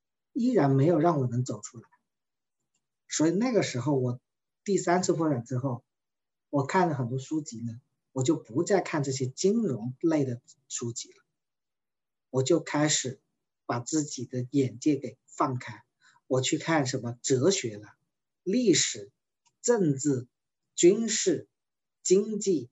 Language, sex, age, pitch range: Chinese, male, 50-69, 130-175 Hz